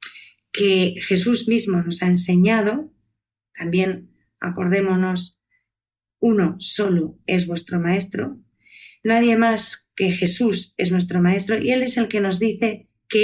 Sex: female